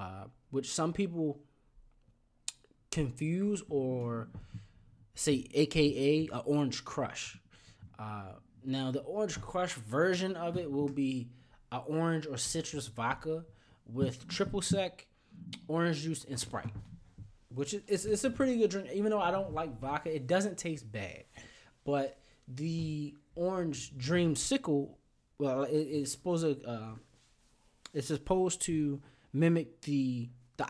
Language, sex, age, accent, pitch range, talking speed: English, male, 20-39, American, 120-155 Hz, 135 wpm